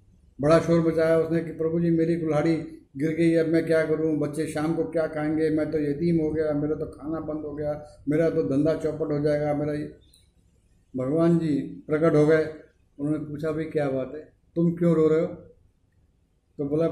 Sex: male